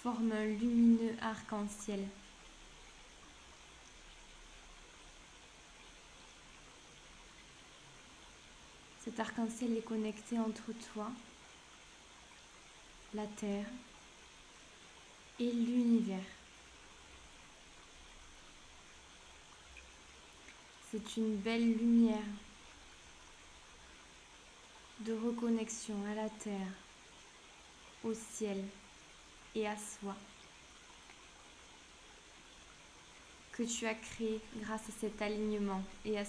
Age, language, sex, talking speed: 20-39, French, female, 65 wpm